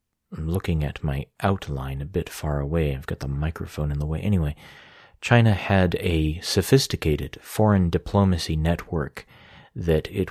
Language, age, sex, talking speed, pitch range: English, 30-49, male, 150 wpm, 75-90 Hz